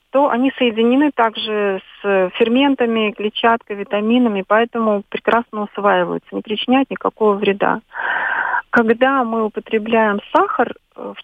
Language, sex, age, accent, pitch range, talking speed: Russian, female, 30-49, native, 200-240 Hz, 105 wpm